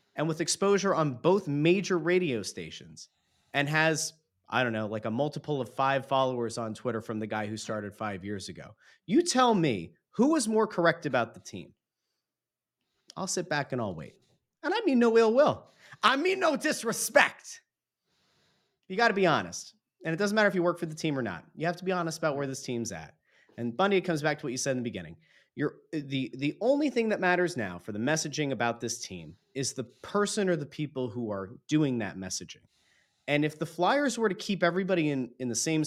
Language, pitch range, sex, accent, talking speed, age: English, 115-180 Hz, male, American, 220 wpm, 30-49